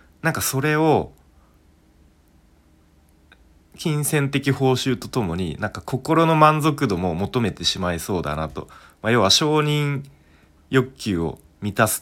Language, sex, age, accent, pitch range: Japanese, male, 30-49, native, 80-110 Hz